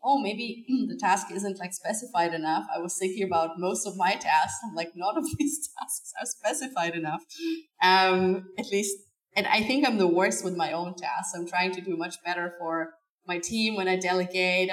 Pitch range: 165-200 Hz